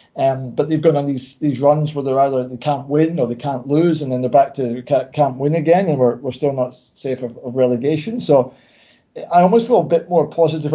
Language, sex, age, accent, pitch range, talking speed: English, male, 40-59, British, 130-150 Hz, 245 wpm